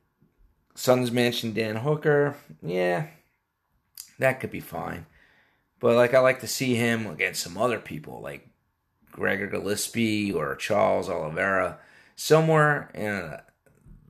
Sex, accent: male, American